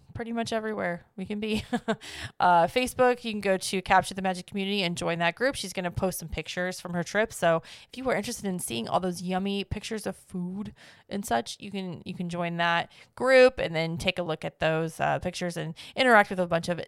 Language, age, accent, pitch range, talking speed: English, 20-39, American, 175-220 Hz, 230 wpm